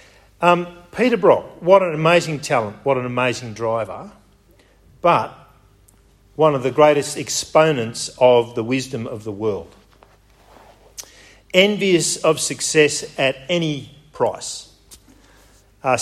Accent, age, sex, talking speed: Australian, 50-69, male, 110 wpm